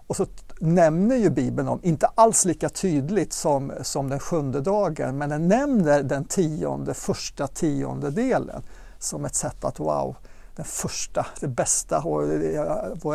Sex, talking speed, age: male, 150 wpm, 60-79